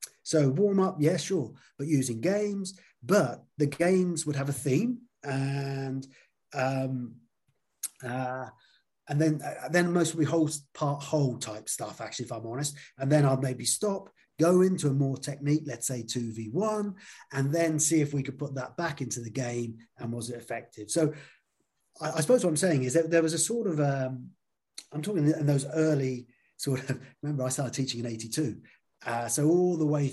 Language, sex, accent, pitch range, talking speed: English, male, British, 125-150 Hz, 195 wpm